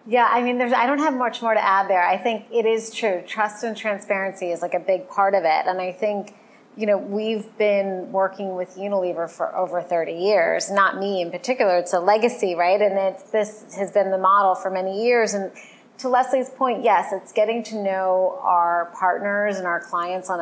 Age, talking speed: 30-49, 215 wpm